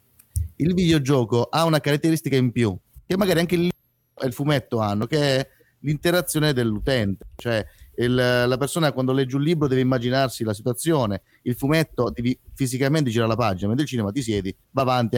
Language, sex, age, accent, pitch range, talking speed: Italian, male, 30-49, native, 120-155 Hz, 180 wpm